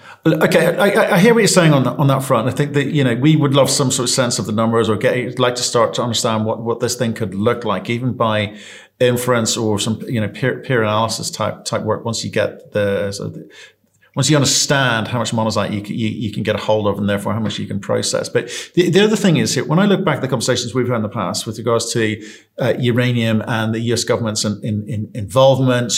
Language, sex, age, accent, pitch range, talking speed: English, male, 40-59, British, 105-130 Hz, 265 wpm